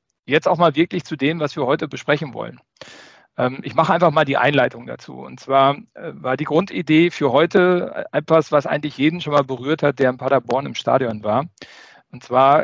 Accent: German